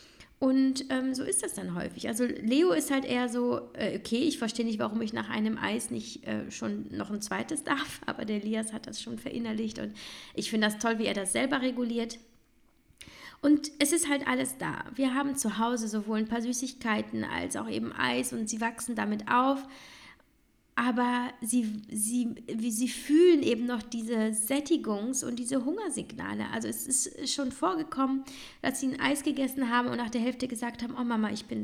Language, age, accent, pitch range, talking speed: German, 20-39, German, 220-265 Hz, 195 wpm